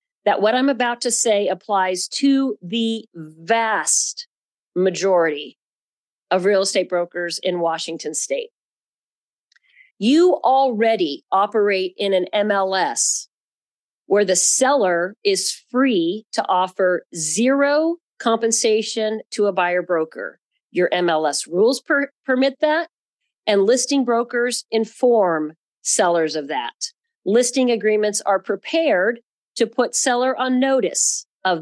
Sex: female